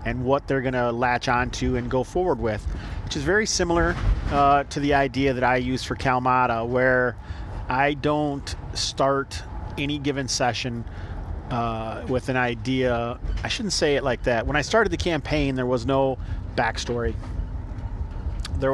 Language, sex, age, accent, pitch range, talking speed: English, male, 40-59, American, 105-135 Hz, 165 wpm